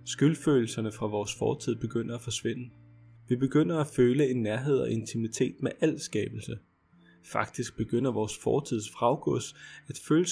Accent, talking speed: native, 145 wpm